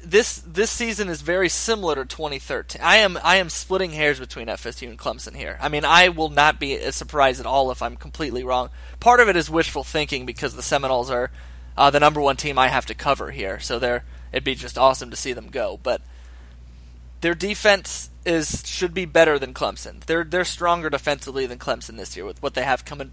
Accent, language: American, English